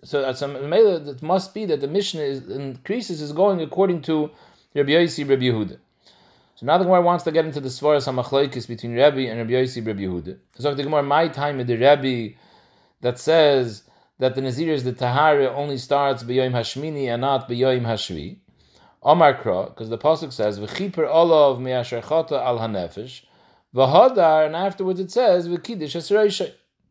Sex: male